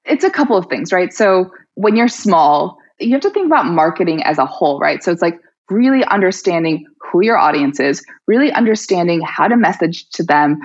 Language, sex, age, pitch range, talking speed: English, female, 20-39, 170-245 Hz, 205 wpm